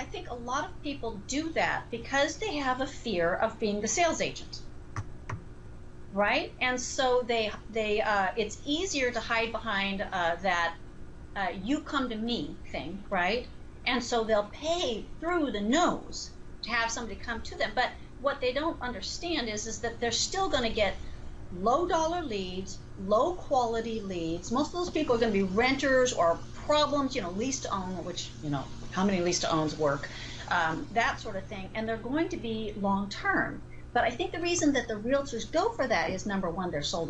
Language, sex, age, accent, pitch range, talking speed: English, female, 40-59, American, 190-265 Hz, 190 wpm